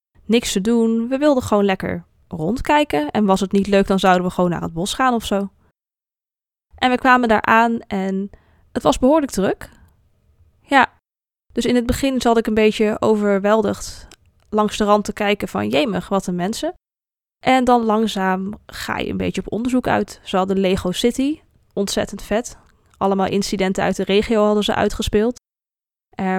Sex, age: female, 20-39